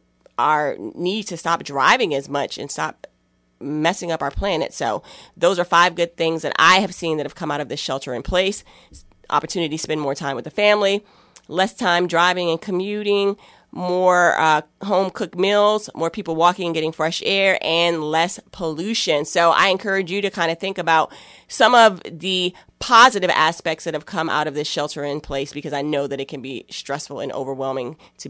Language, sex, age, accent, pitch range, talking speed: English, female, 30-49, American, 145-180 Hz, 200 wpm